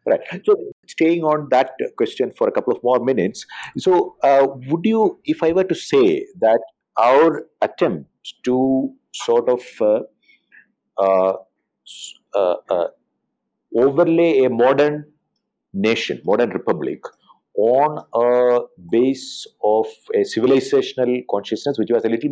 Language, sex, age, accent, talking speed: English, male, 50-69, Indian, 130 wpm